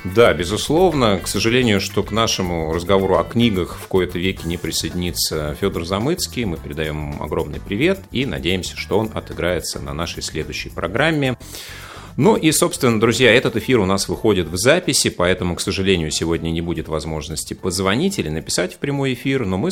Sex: male